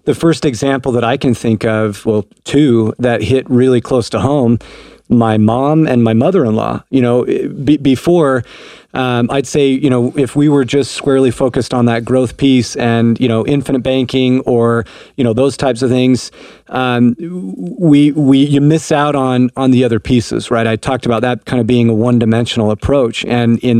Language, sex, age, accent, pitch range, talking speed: English, male, 40-59, American, 115-135 Hz, 190 wpm